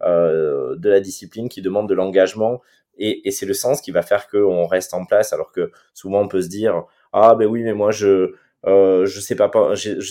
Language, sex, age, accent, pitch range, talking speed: French, male, 20-39, French, 95-120 Hz, 230 wpm